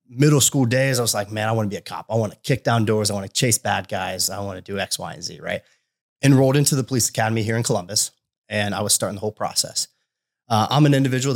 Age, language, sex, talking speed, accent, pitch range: 30-49, English, male, 280 wpm, American, 105-130 Hz